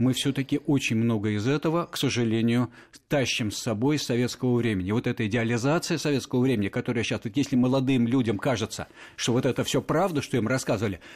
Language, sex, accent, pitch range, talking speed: Russian, male, native, 110-145 Hz, 185 wpm